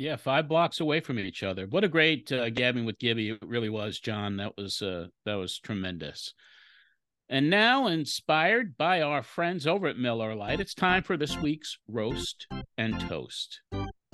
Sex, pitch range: male, 115-150 Hz